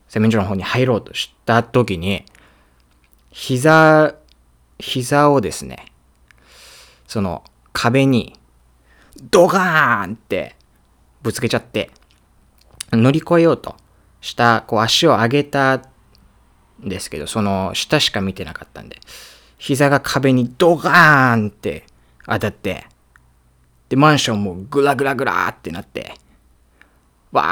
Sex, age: male, 20-39